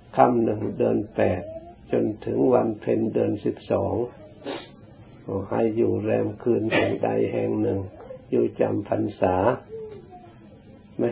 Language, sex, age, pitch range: Thai, male, 60-79, 100-125 Hz